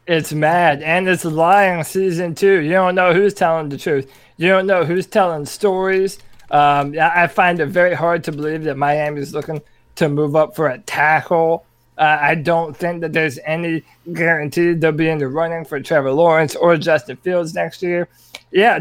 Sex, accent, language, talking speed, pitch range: male, American, English, 190 wpm, 155-185 Hz